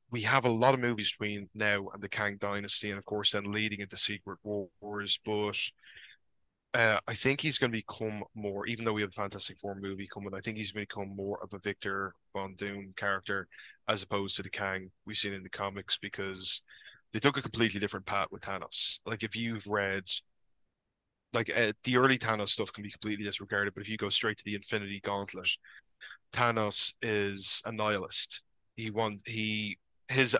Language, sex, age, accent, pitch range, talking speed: English, male, 20-39, Irish, 100-110 Hz, 195 wpm